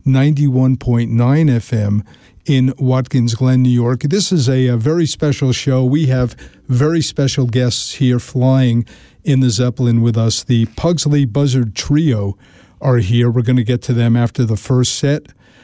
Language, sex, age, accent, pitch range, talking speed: English, male, 50-69, American, 120-140 Hz, 160 wpm